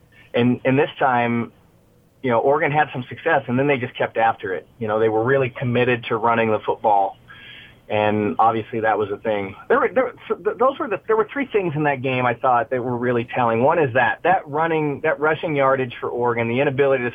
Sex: male